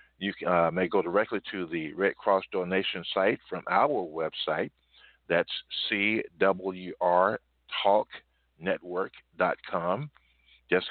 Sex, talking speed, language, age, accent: male, 95 wpm, English, 50-69, American